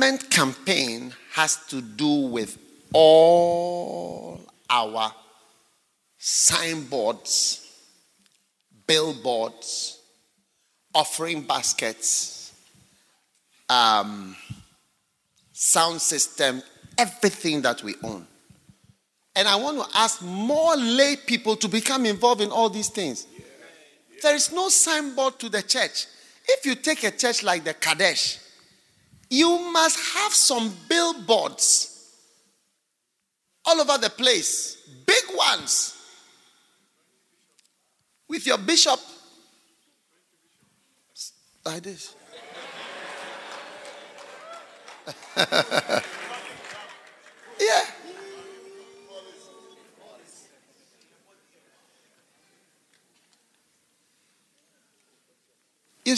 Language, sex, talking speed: English, male, 70 wpm